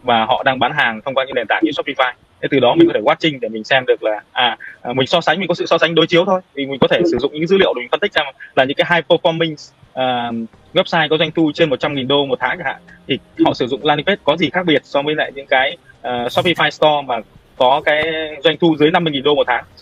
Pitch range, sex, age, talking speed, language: 135-170 Hz, male, 20-39, 285 wpm, Vietnamese